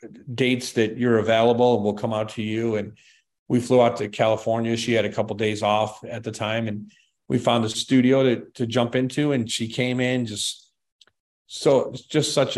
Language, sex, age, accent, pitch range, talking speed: German, male, 40-59, American, 105-125 Hz, 200 wpm